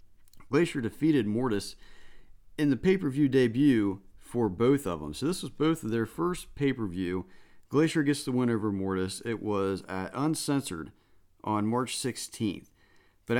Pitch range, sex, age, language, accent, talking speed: 95-130 Hz, male, 40-59, English, American, 150 wpm